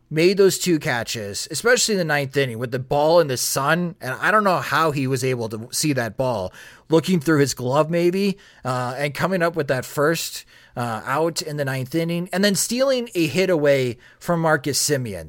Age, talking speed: 30-49, 210 wpm